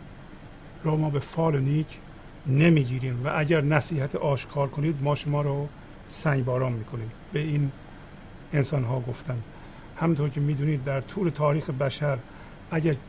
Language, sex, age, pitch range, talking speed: English, male, 50-69, 140-160 Hz, 135 wpm